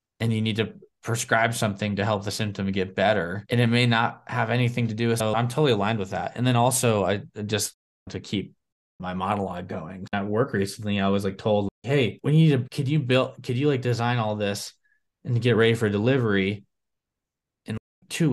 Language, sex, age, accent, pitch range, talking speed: English, male, 20-39, American, 100-125 Hz, 215 wpm